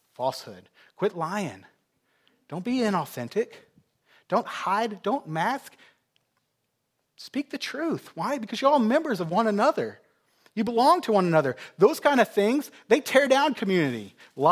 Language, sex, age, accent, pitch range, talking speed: English, male, 30-49, American, 160-235 Hz, 140 wpm